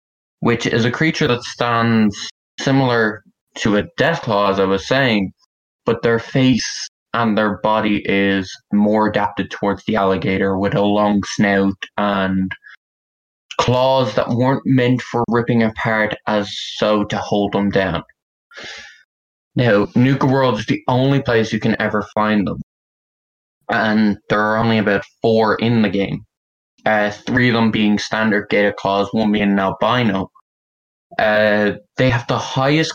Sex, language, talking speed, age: male, English, 150 wpm, 20-39